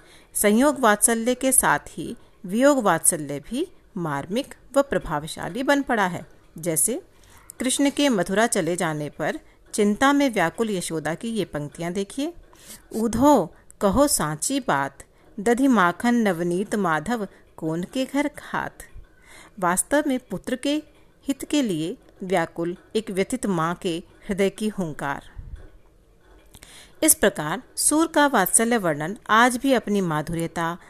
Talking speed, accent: 120 wpm, native